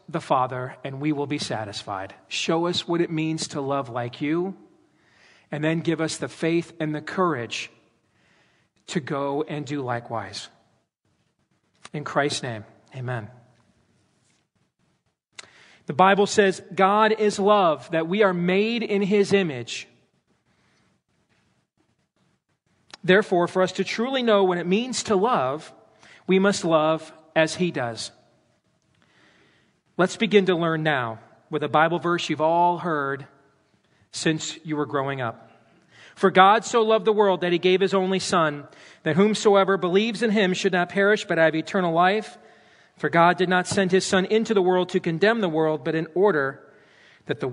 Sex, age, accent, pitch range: male, 40-59, American, 150-195 Hz